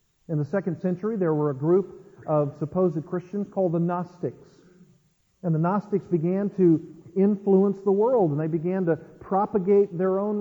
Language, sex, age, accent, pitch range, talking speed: English, male, 50-69, American, 170-200 Hz, 165 wpm